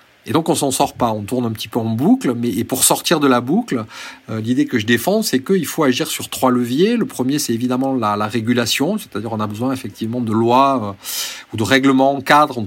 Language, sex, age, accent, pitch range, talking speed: French, male, 40-59, French, 120-155 Hz, 250 wpm